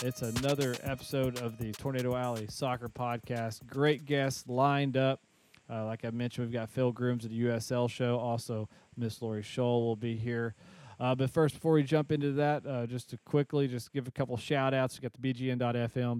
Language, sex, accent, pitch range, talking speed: English, male, American, 115-130 Hz, 195 wpm